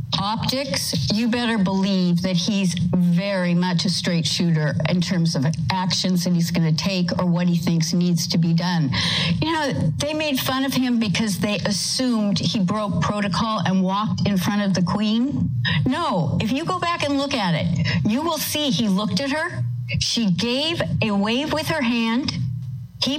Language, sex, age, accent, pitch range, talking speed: English, female, 50-69, American, 170-215 Hz, 185 wpm